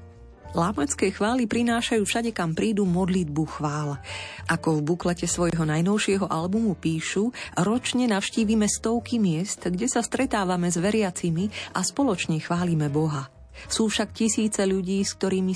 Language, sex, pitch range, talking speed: Slovak, female, 155-205 Hz, 130 wpm